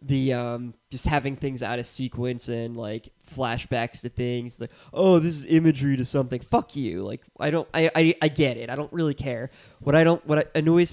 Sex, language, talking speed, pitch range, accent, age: male, English, 215 wpm, 125-160 Hz, American, 20-39